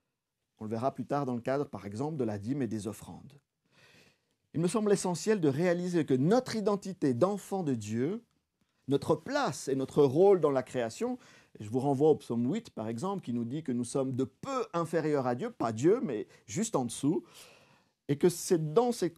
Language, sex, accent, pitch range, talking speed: French, male, French, 130-185 Hz, 205 wpm